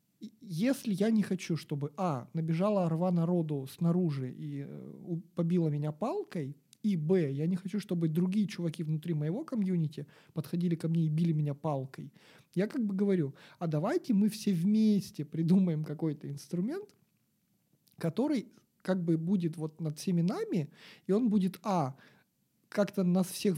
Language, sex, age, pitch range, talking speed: Russian, male, 40-59, 155-200 Hz, 150 wpm